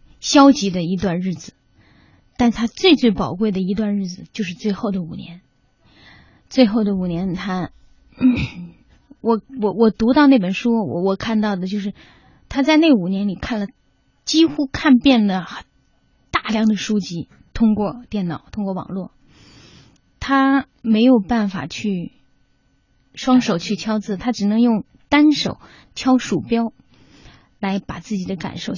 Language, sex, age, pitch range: Chinese, female, 20-39, 190-240 Hz